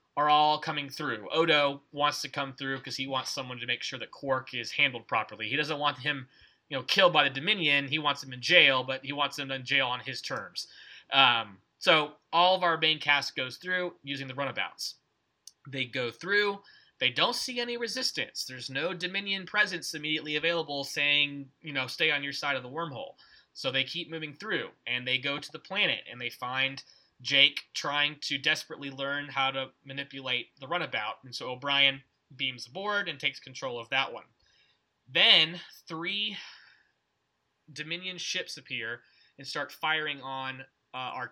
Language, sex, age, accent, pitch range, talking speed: English, male, 20-39, American, 130-160 Hz, 185 wpm